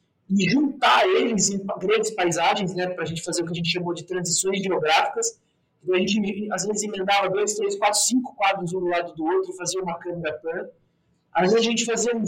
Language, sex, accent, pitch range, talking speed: Portuguese, male, Brazilian, 180-245 Hz, 230 wpm